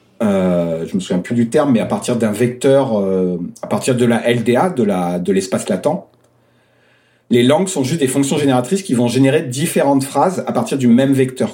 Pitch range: 125-165 Hz